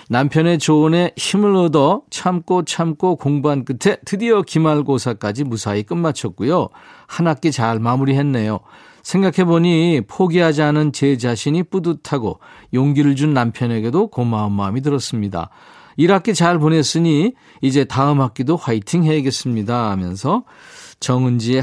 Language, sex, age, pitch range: Korean, male, 40-59, 120-170 Hz